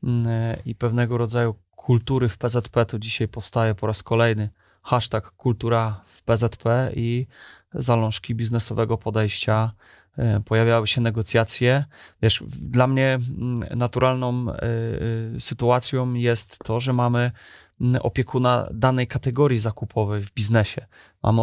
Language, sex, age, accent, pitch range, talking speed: Polish, male, 20-39, native, 115-125 Hz, 110 wpm